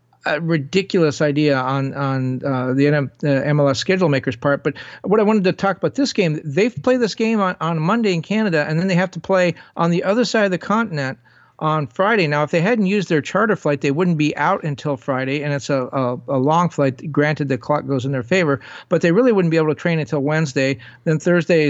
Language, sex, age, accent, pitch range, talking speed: English, male, 50-69, American, 140-175 Hz, 235 wpm